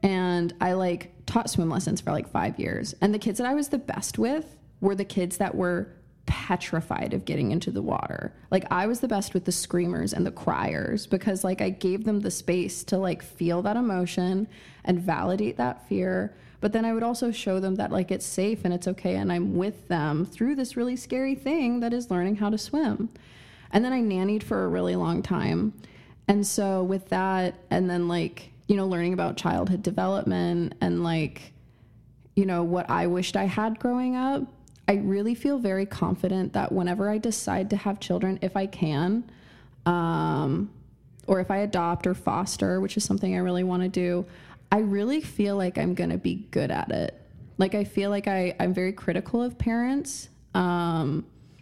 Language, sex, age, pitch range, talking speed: English, female, 20-39, 170-205 Hz, 200 wpm